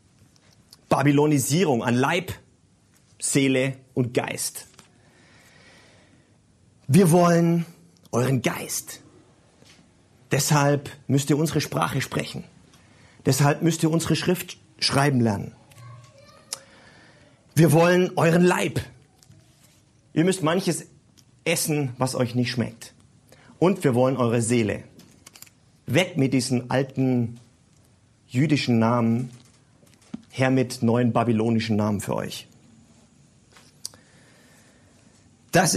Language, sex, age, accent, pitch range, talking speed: German, male, 40-59, German, 120-145 Hz, 90 wpm